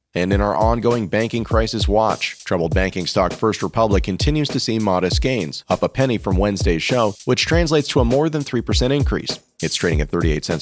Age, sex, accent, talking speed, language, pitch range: 30-49, male, American, 190 wpm, English, 90-110 Hz